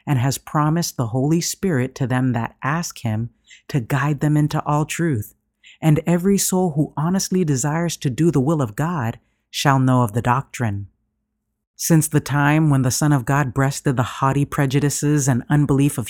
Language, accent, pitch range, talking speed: English, American, 130-160 Hz, 185 wpm